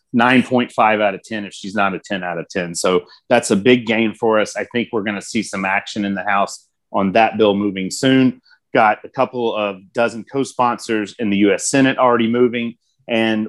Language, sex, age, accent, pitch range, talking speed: English, male, 30-49, American, 105-120 Hz, 210 wpm